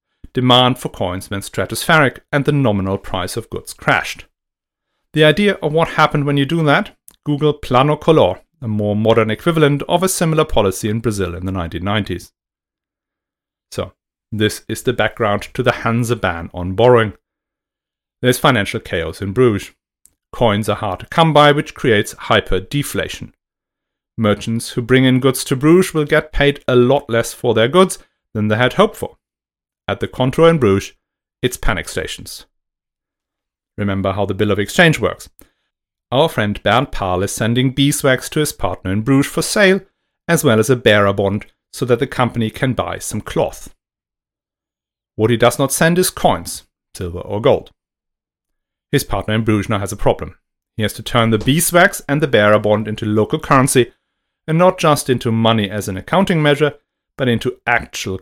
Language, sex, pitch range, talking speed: English, male, 105-145 Hz, 175 wpm